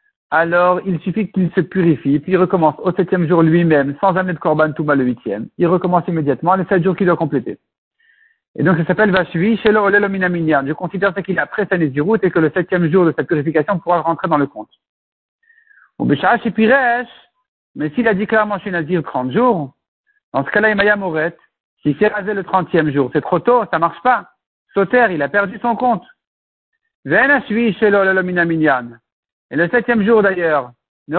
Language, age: French, 60-79